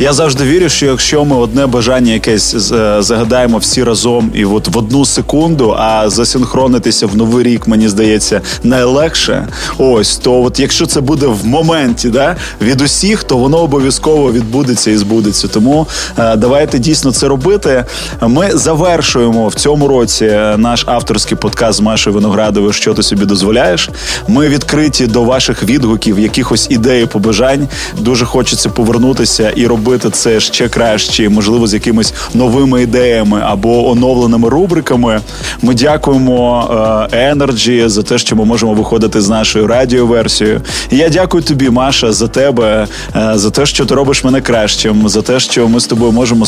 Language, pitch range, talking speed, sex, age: Ukrainian, 110-135 Hz, 150 wpm, male, 20-39